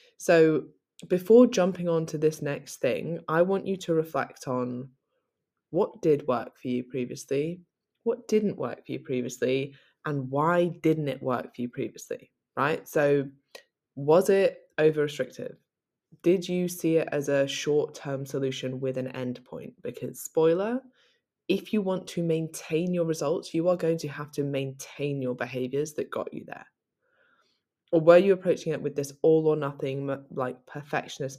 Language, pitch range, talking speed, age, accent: English, 135-165 Hz, 165 wpm, 20-39, British